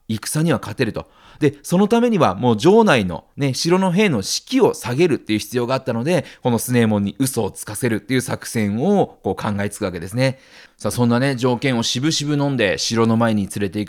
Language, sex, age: Japanese, male, 30-49